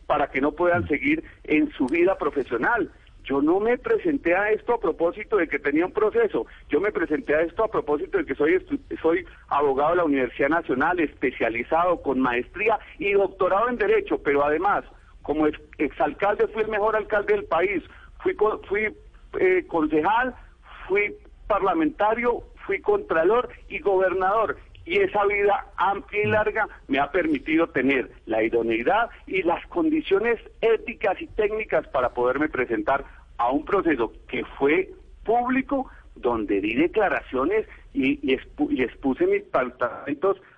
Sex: male